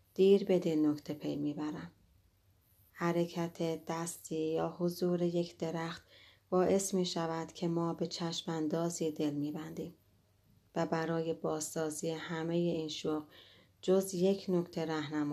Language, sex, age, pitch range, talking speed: Persian, female, 30-49, 145-175 Hz, 115 wpm